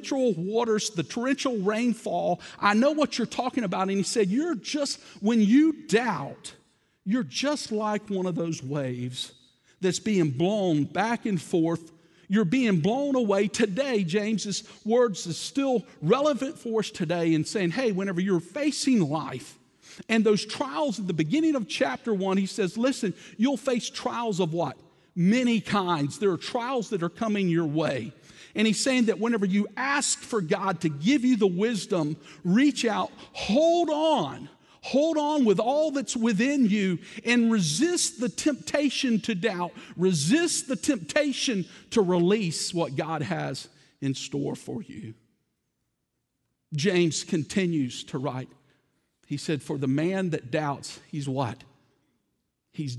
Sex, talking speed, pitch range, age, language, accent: male, 155 wpm, 165-245 Hz, 50-69, English, American